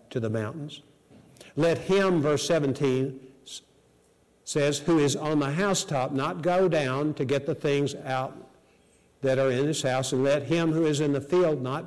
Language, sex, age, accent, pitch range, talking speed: English, male, 50-69, American, 135-170 Hz, 175 wpm